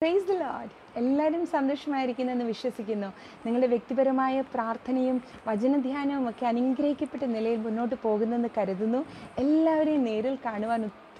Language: Malayalam